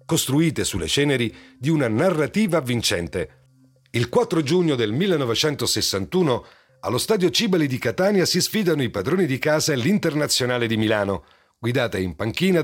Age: 40-59